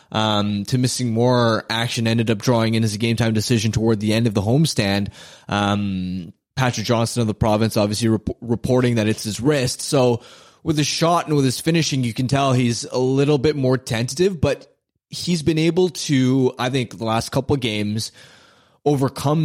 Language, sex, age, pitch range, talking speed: English, male, 20-39, 115-145 Hz, 190 wpm